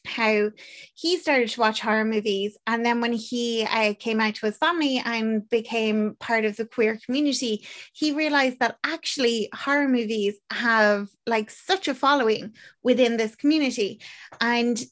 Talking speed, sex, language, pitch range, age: 155 wpm, female, English, 215-250 Hz, 20-39